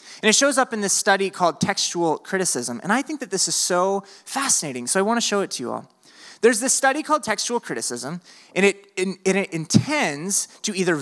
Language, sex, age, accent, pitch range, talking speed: English, male, 30-49, American, 155-225 Hz, 210 wpm